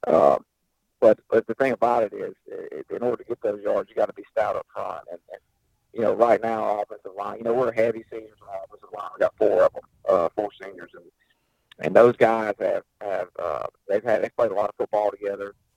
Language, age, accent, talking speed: English, 50-69, American, 240 wpm